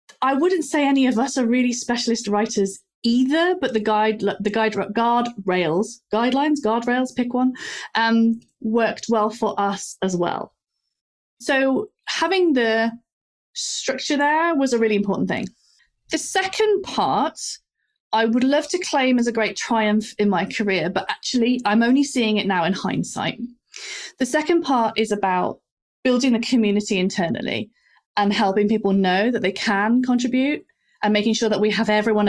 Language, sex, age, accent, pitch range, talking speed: English, female, 30-49, British, 210-265 Hz, 160 wpm